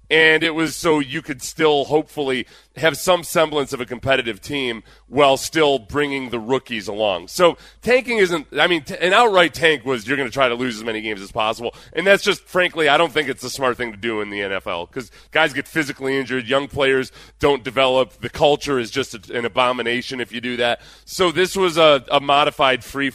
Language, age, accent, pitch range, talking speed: English, 30-49, American, 125-160 Hz, 215 wpm